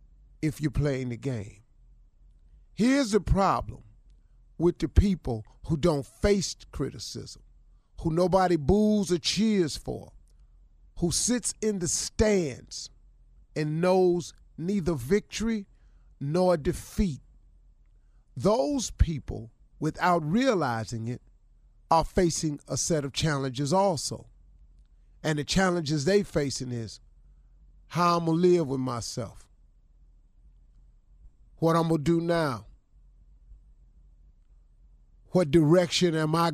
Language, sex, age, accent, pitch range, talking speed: English, male, 40-59, American, 110-175 Hz, 110 wpm